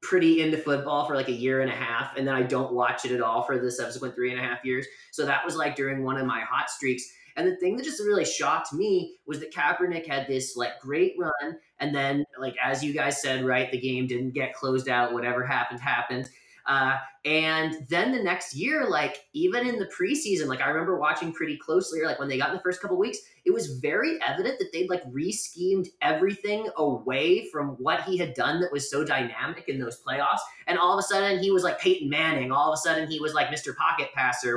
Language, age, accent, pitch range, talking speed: English, 20-39, American, 135-180 Hz, 240 wpm